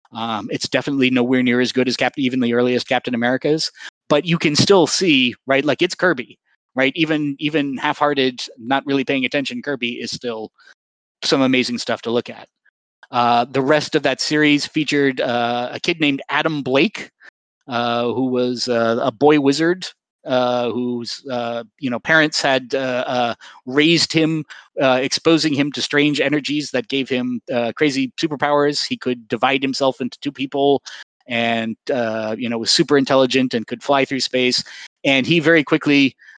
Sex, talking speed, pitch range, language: male, 175 wpm, 120-145 Hz, English